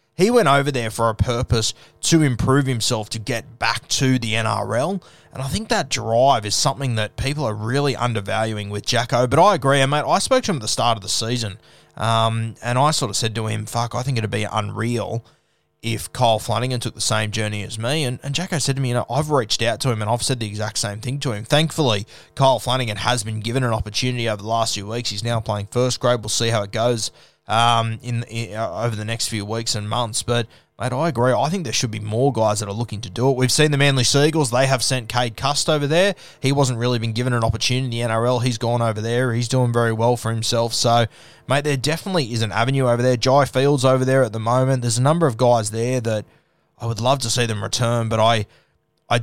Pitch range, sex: 115-135 Hz, male